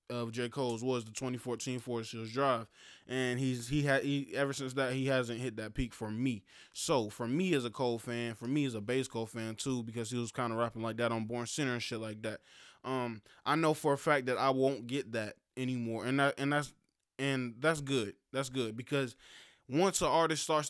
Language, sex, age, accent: English, male, 20-39, American